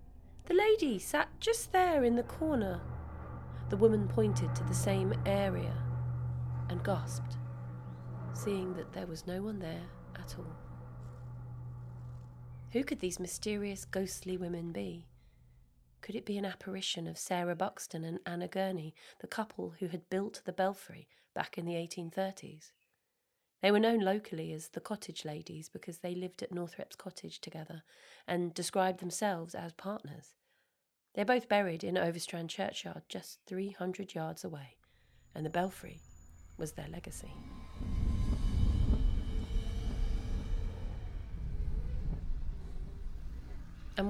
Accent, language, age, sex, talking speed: British, English, 30-49, female, 125 wpm